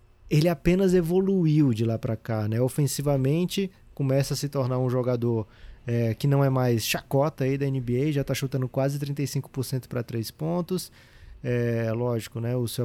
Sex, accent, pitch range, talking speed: male, Brazilian, 120-140 Hz, 175 wpm